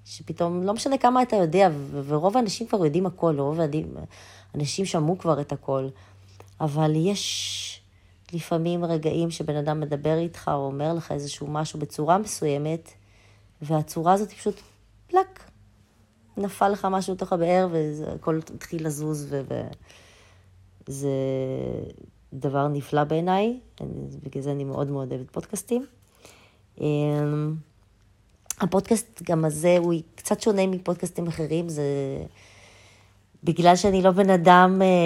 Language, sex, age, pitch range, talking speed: Hebrew, female, 30-49, 135-175 Hz, 120 wpm